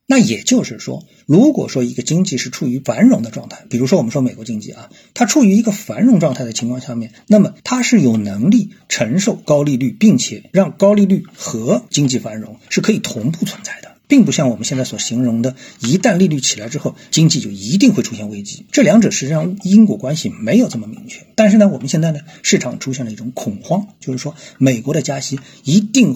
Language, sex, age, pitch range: Chinese, male, 50-69, 125-200 Hz